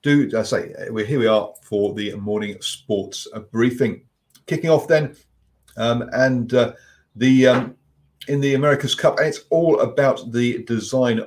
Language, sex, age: English, male, 40-59